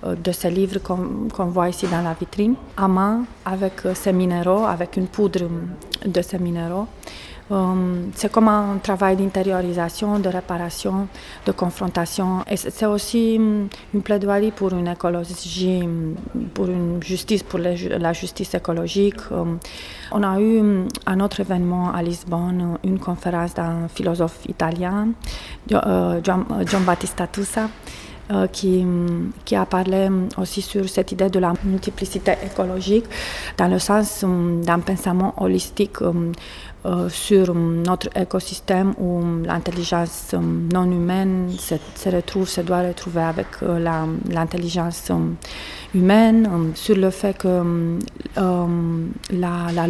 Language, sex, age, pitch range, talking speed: French, female, 30-49, 175-195 Hz, 135 wpm